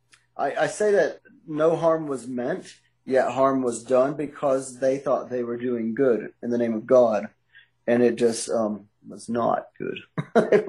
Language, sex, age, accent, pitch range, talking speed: English, male, 30-49, American, 125-145 Hz, 180 wpm